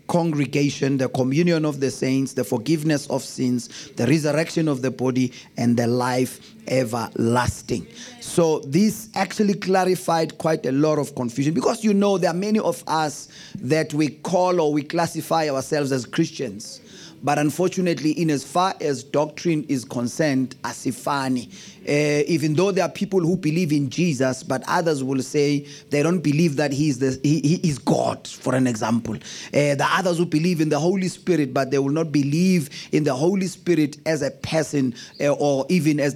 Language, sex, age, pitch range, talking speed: English, male, 30-49, 135-170 Hz, 180 wpm